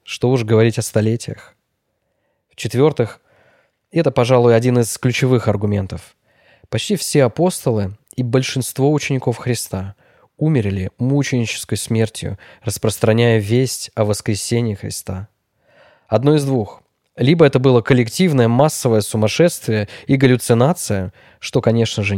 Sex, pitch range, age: male, 105-135 Hz, 20-39